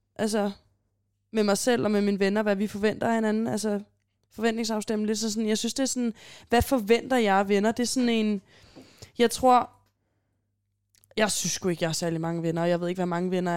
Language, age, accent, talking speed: Danish, 20-39, native, 205 wpm